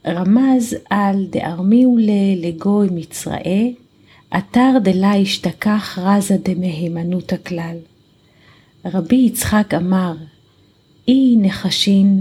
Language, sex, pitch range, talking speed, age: Hebrew, female, 170-200 Hz, 80 wpm, 40-59